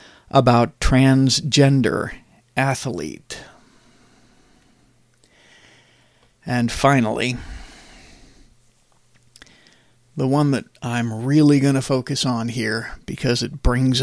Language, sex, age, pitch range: English, male, 50-69, 125-140 Hz